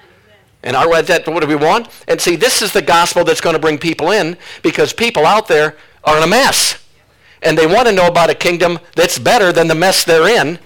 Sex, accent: male, American